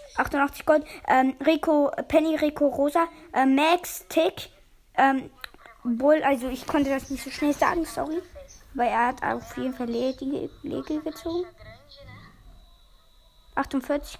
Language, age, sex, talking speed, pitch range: German, 20-39, female, 125 wpm, 260-335 Hz